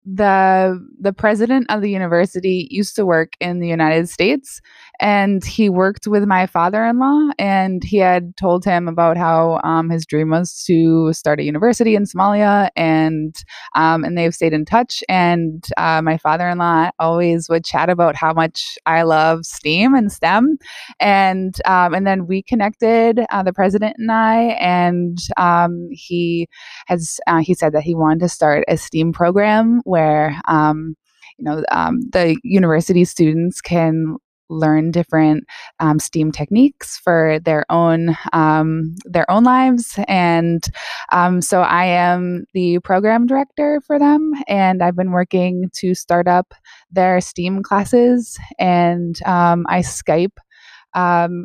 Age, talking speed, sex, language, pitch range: 20-39, 150 wpm, female, English, 165-200 Hz